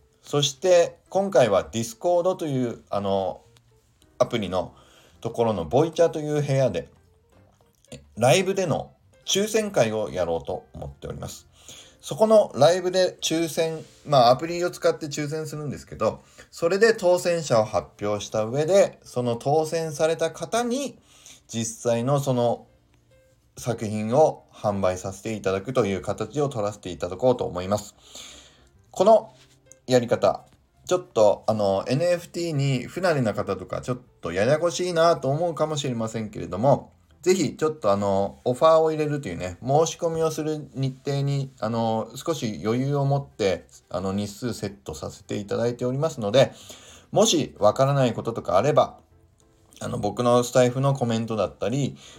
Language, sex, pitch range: Japanese, male, 105-155 Hz